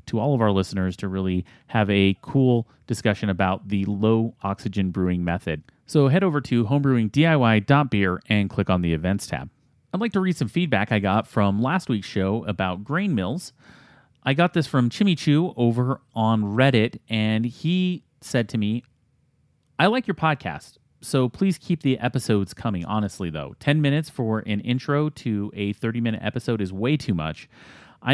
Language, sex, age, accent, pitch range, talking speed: English, male, 30-49, American, 100-135 Hz, 175 wpm